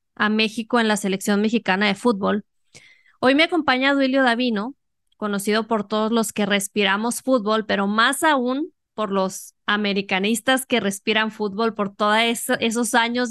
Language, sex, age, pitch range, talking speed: Spanish, female, 20-39, 205-245 Hz, 150 wpm